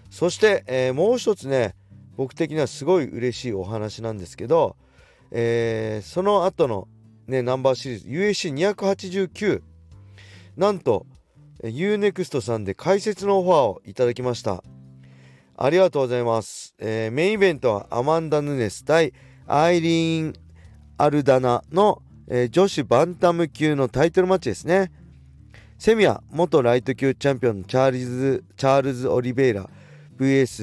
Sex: male